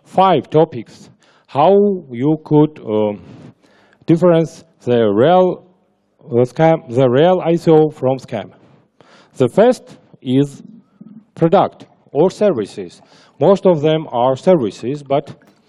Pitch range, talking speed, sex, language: 130-170 Hz, 105 wpm, male, English